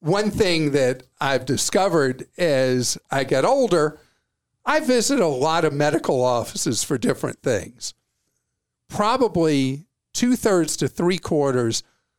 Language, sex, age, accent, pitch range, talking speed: English, male, 50-69, American, 140-185 Hz, 115 wpm